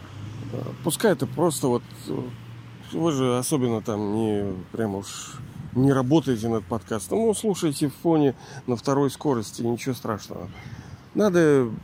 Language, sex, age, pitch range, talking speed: Russian, male, 40-59, 115-145 Hz, 120 wpm